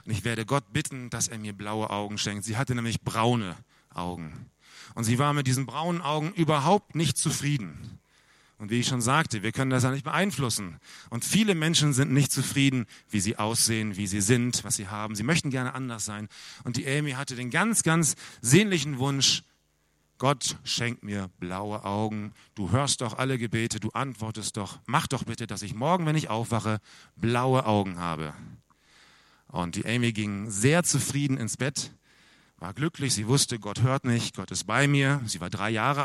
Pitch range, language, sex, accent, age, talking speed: 100-140 Hz, German, male, German, 40-59, 190 wpm